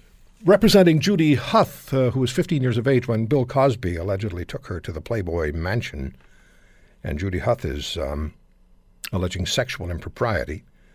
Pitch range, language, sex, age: 100-145 Hz, English, male, 60-79